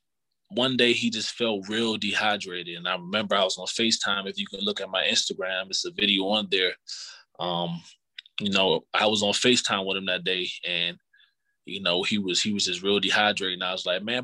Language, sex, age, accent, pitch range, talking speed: English, male, 20-39, American, 100-125 Hz, 220 wpm